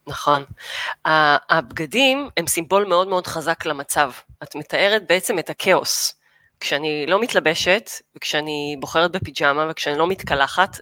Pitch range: 160-225 Hz